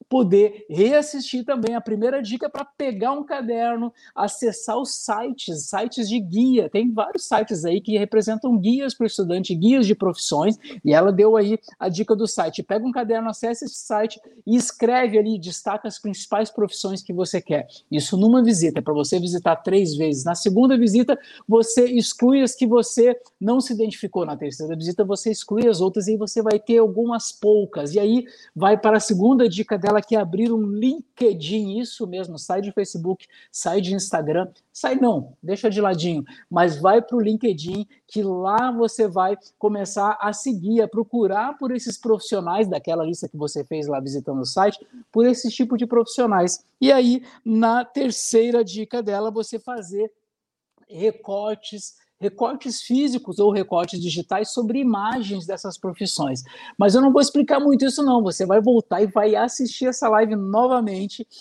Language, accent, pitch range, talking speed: Portuguese, Brazilian, 195-240 Hz, 170 wpm